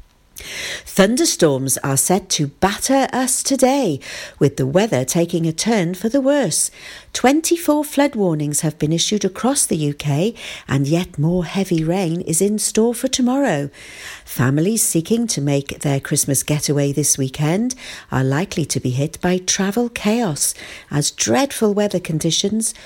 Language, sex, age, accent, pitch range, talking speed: English, female, 50-69, British, 150-205 Hz, 145 wpm